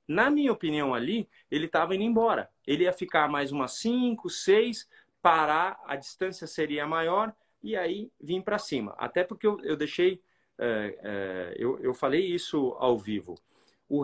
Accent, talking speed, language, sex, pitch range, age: Brazilian, 165 wpm, Portuguese, male, 140-220 Hz, 40-59